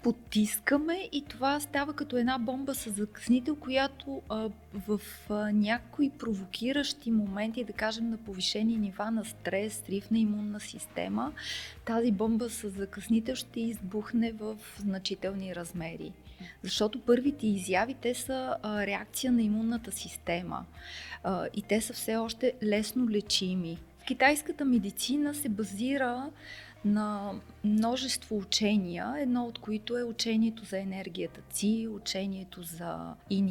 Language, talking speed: Bulgarian, 130 wpm